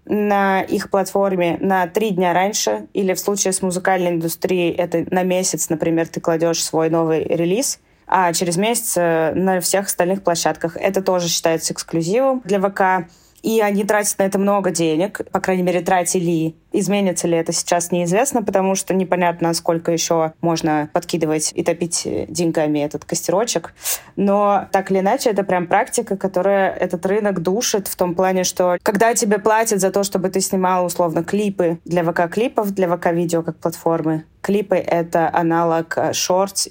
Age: 20-39